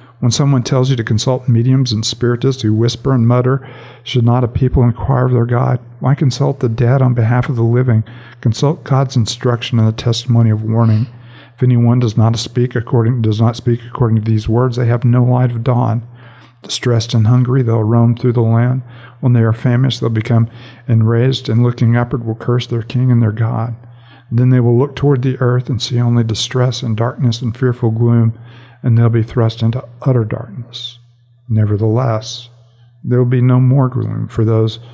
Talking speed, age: 200 wpm, 50-69